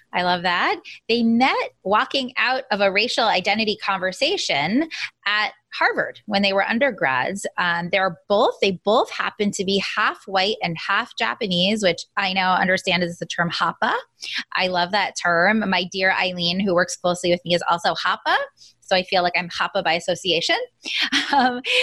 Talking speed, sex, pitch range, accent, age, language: 175 wpm, female, 180-250 Hz, American, 20-39, English